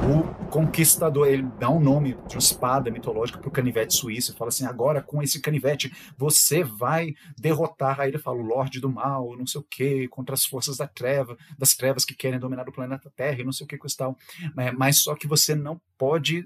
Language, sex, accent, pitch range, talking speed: Portuguese, male, Brazilian, 130-165 Hz, 215 wpm